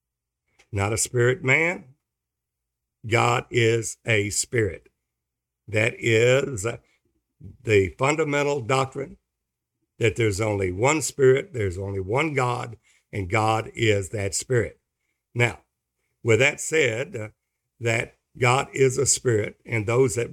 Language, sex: English, male